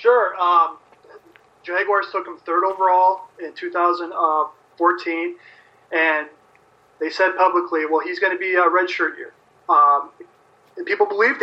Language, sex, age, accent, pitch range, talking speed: English, male, 30-49, American, 160-200 Hz, 130 wpm